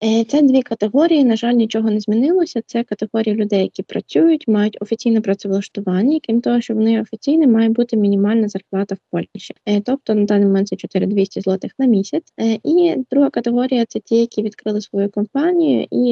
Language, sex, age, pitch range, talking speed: Ukrainian, female, 20-39, 205-250 Hz, 175 wpm